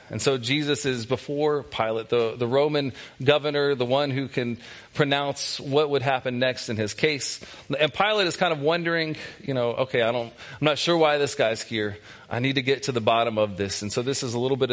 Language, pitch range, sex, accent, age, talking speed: English, 115-150 Hz, male, American, 40-59, 230 wpm